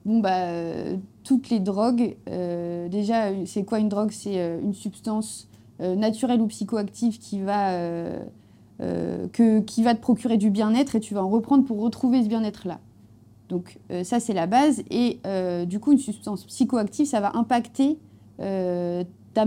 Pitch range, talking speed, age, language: 190-240 Hz, 165 wpm, 30-49, French